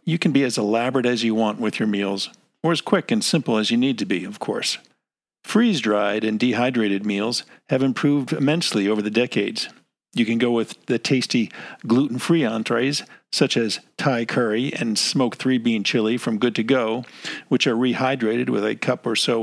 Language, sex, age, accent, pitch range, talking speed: English, male, 50-69, American, 110-135 Hz, 190 wpm